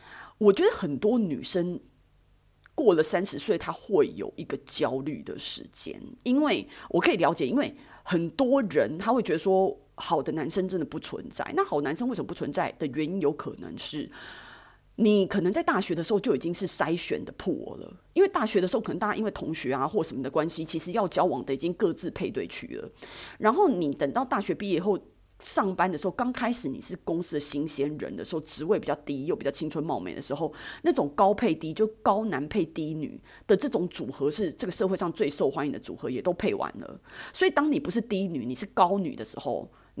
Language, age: Chinese, 30-49